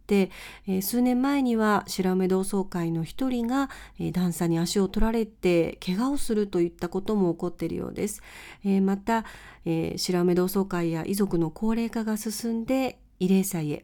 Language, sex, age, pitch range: Japanese, female, 40-59, 175-235 Hz